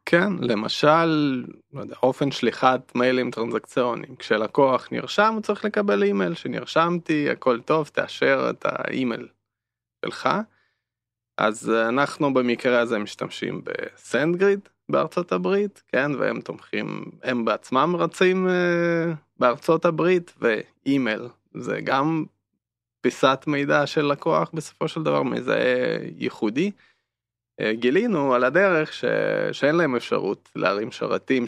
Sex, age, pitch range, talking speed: male, 20-39, 120-175 Hz, 110 wpm